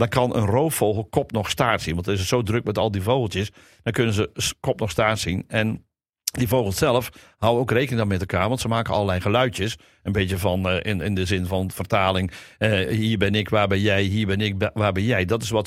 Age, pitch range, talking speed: 50-69, 95-115 Hz, 250 wpm